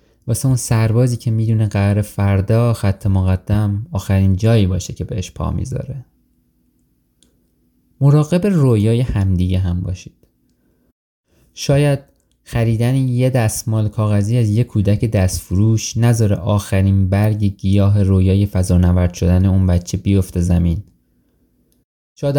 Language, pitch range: Persian, 95-115 Hz